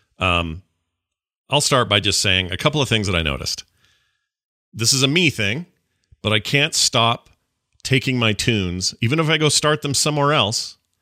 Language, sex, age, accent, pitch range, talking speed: English, male, 40-59, American, 95-130 Hz, 180 wpm